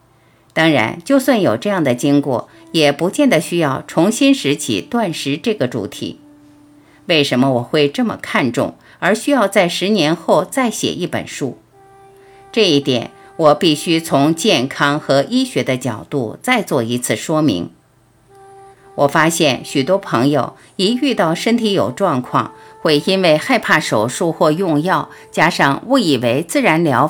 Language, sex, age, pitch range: Chinese, female, 50-69, 135-205 Hz